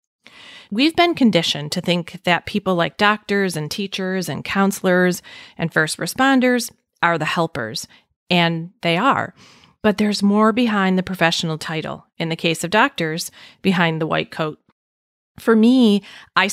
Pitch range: 165-205 Hz